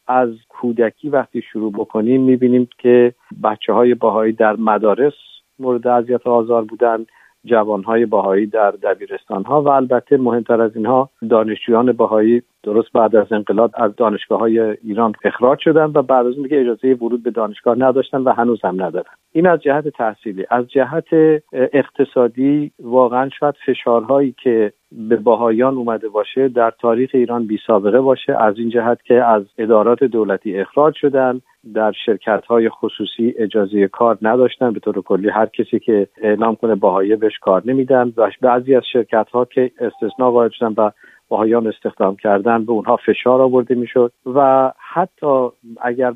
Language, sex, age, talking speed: Persian, male, 50-69, 150 wpm